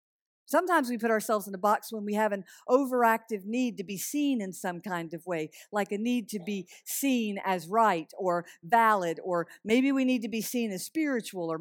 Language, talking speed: English, 210 wpm